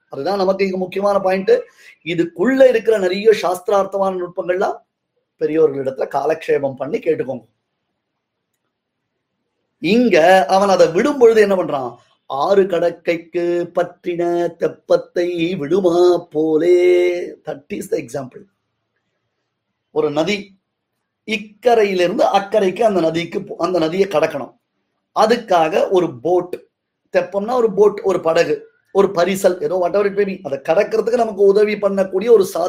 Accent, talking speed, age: native, 85 wpm, 30-49